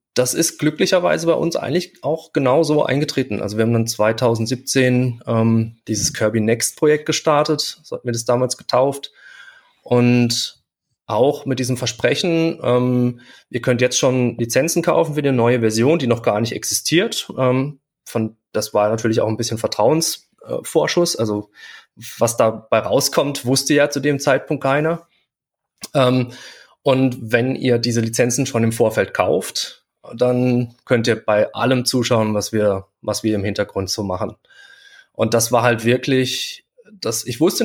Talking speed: 160 wpm